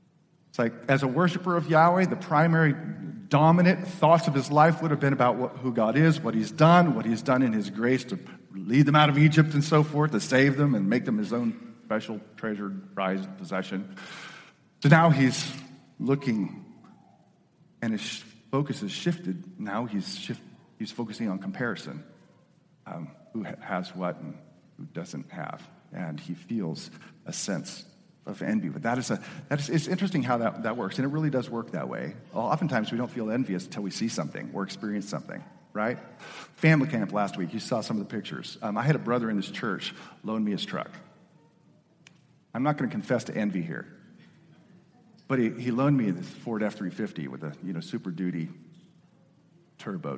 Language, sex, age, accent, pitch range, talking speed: English, male, 40-59, American, 110-170 Hz, 195 wpm